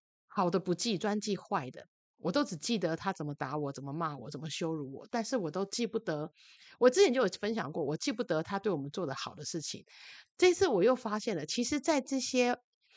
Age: 30-49